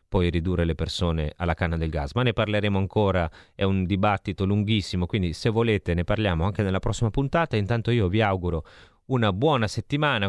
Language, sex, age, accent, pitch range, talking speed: Italian, male, 30-49, native, 90-120 Hz, 185 wpm